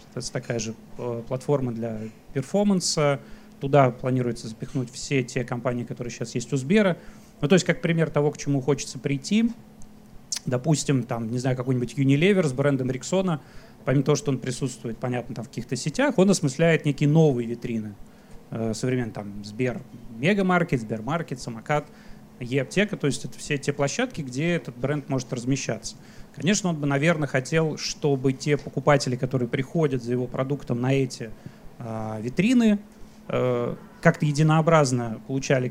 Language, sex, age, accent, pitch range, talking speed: Russian, male, 30-49, native, 125-155 Hz, 150 wpm